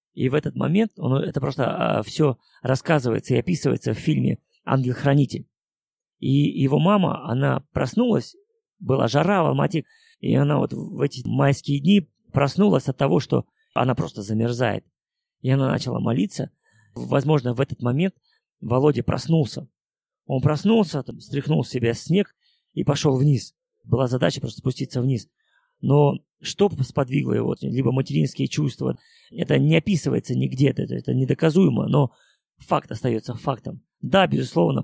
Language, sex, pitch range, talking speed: Russian, male, 130-165 Hz, 140 wpm